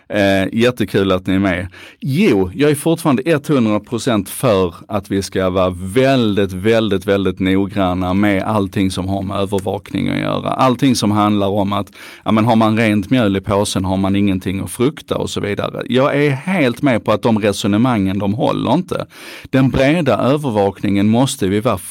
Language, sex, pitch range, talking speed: Swedish, male, 100-130 Hz, 180 wpm